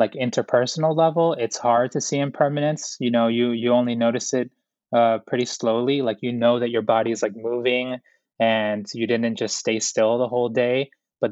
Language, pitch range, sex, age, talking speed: English, 115-140 Hz, male, 20-39, 195 wpm